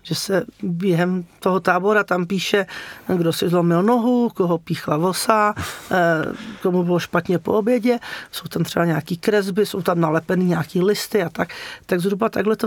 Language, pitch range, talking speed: Czech, 180-215 Hz, 165 wpm